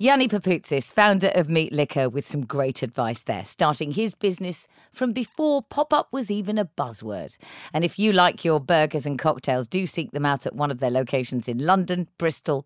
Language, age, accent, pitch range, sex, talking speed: English, 40-59, British, 140-185 Hz, female, 195 wpm